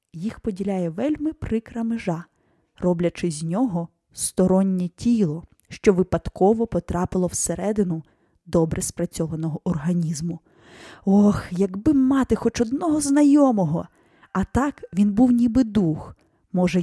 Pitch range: 180-230 Hz